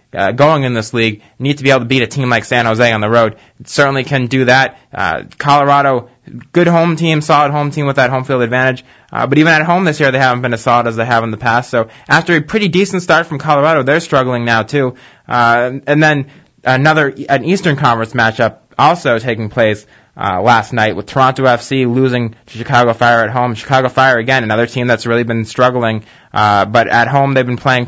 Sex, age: male, 20-39